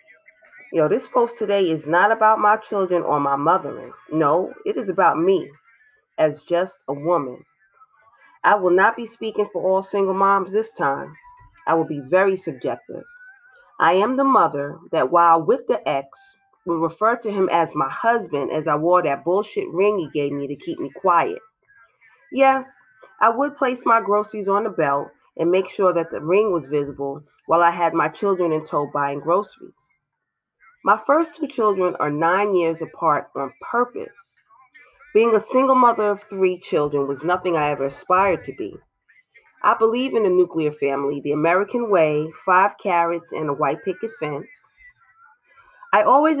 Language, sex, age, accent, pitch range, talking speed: English, female, 30-49, American, 165-245 Hz, 175 wpm